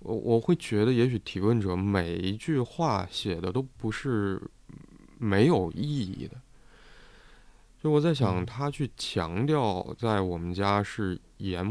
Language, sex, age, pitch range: Chinese, male, 20-39, 95-125 Hz